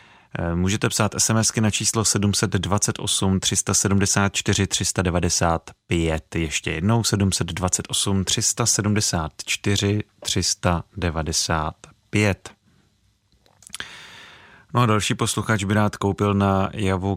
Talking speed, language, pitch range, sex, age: 75 wpm, Czech, 90-110 Hz, male, 30-49